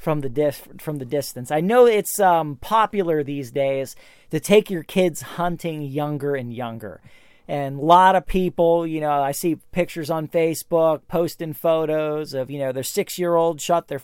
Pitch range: 145-175 Hz